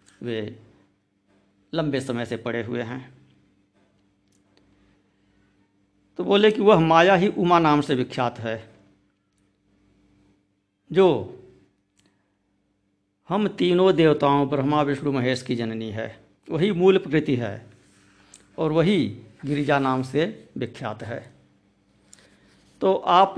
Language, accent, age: Hindi, native, 60-79